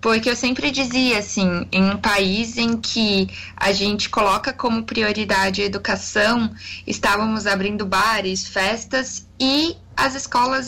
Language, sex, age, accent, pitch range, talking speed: Portuguese, female, 10-29, Brazilian, 210-265 Hz, 135 wpm